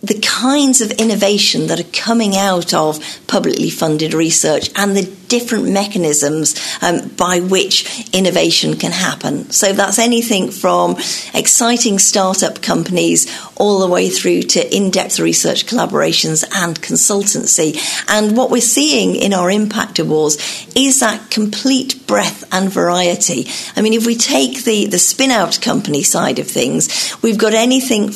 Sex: female